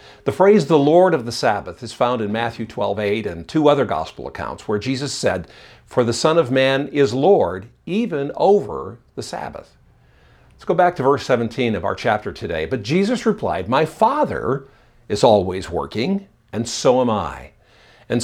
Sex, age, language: male, 60-79, English